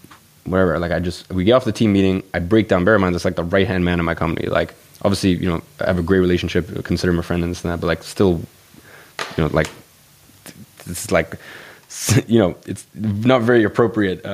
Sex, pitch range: male, 85-100 Hz